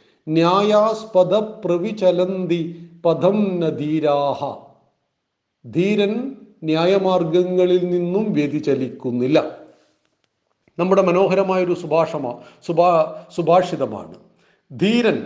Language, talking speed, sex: Malayalam, 40 wpm, male